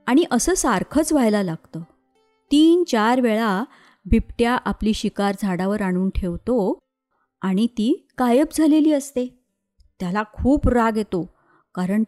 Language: Marathi